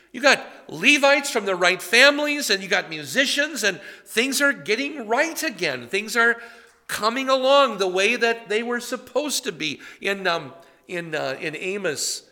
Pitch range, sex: 160-235 Hz, male